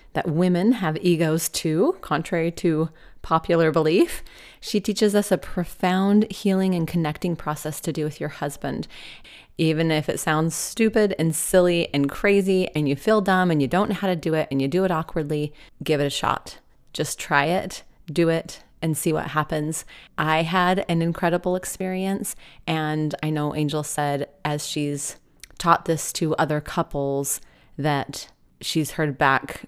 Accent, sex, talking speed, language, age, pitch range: American, female, 170 wpm, English, 30-49, 155-185 Hz